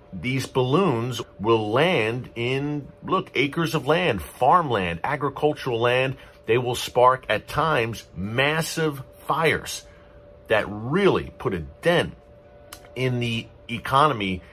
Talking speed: 110 wpm